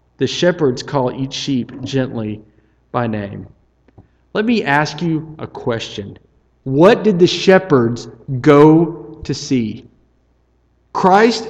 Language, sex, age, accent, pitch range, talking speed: English, male, 40-59, American, 130-185 Hz, 115 wpm